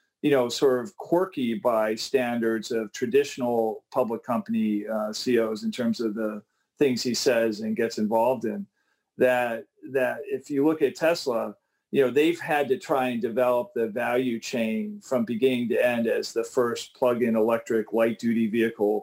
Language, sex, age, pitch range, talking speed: English, male, 40-59, 115-165 Hz, 175 wpm